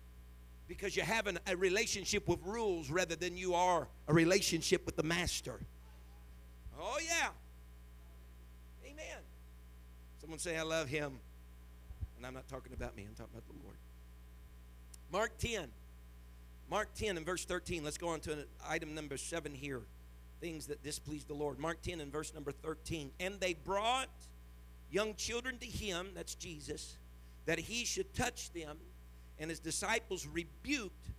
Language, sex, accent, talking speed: English, male, American, 150 wpm